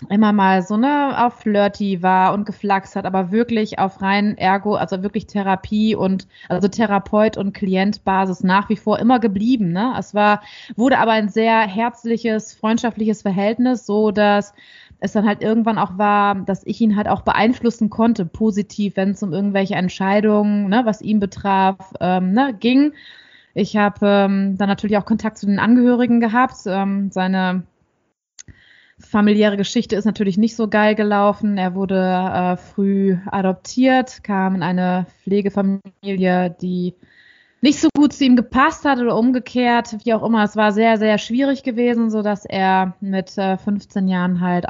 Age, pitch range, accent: 20-39, 195-225 Hz, German